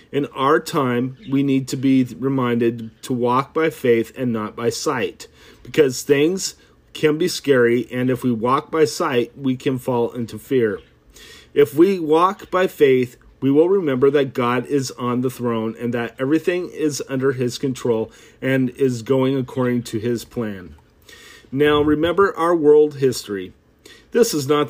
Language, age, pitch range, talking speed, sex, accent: English, 40-59, 120-145 Hz, 165 wpm, male, American